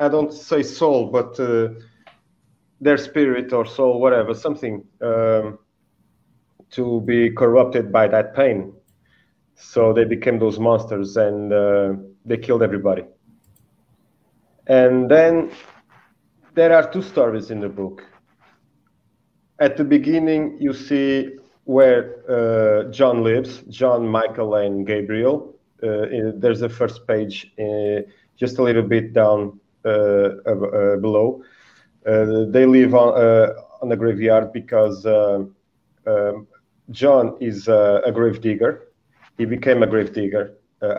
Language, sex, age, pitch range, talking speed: English, male, 30-49, 105-125 Hz, 125 wpm